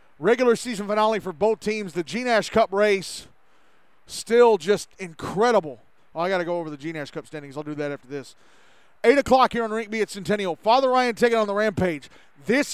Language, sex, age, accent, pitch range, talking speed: English, male, 40-59, American, 185-245 Hz, 195 wpm